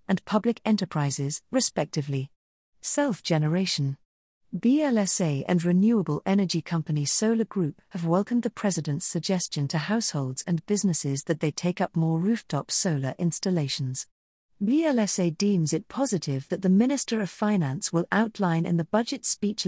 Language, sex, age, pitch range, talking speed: English, female, 50-69, 155-205 Hz, 135 wpm